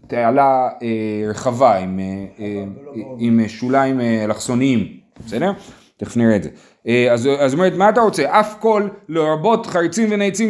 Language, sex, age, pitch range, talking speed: Hebrew, male, 30-49, 125-195 Hz, 120 wpm